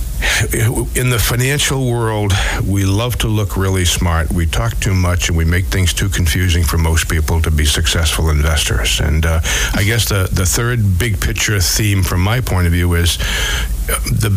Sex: male